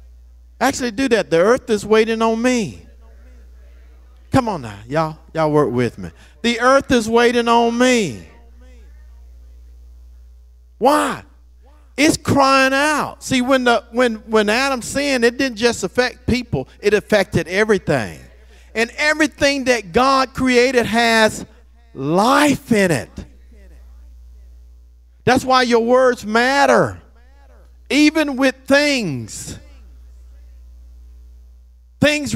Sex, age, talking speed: male, 50-69, 110 wpm